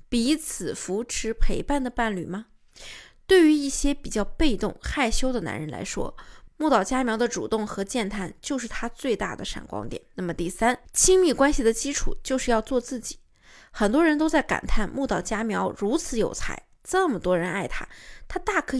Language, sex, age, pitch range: Chinese, female, 20-39, 225-300 Hz